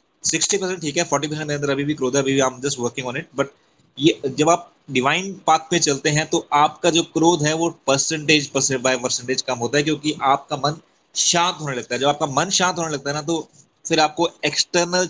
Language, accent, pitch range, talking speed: Hindi, native, 135-160 Hz, 200 wpm